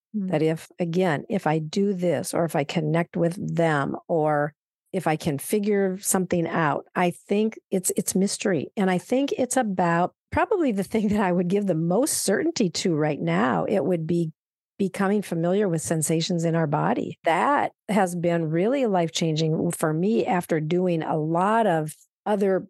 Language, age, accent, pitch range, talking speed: English, 50-69, American, 160-195 Hz, 175 wpm